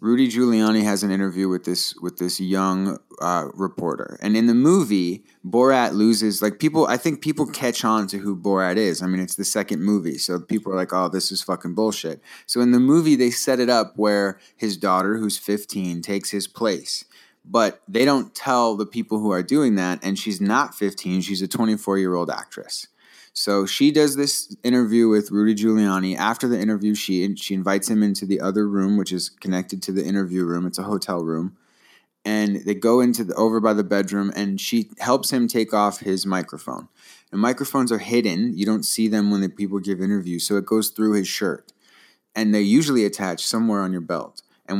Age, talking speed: 30-49, 210 wpm